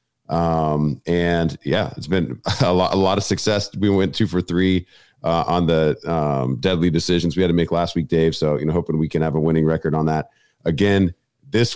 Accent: American